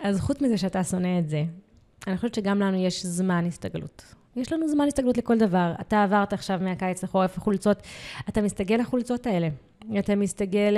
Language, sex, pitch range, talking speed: Hebrew, female, 180-225 Hz, 180 wpm